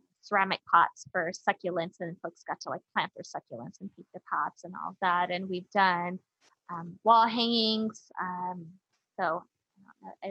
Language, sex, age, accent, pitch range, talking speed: English, female, 20-39, American, 175-200 Hz, 165 wpm